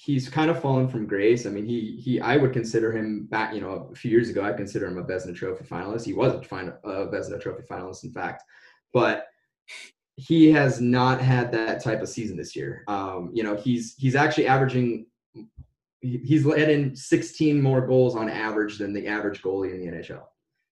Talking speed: 200 wpm